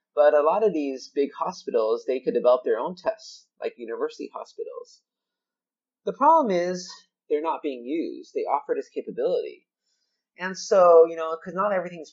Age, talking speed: 30-49, 170 wpm